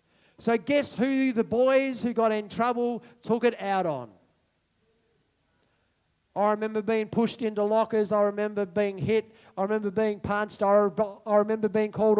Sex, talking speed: male, 160 wpm